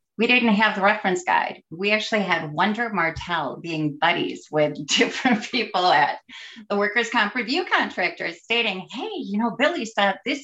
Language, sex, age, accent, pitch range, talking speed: English, female, 30-49, American, 155-210 Hz, 165 wpm